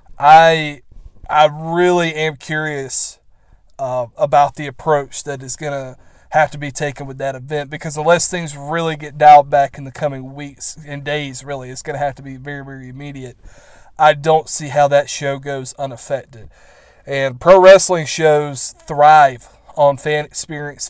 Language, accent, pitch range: English, American, 135-155 Hz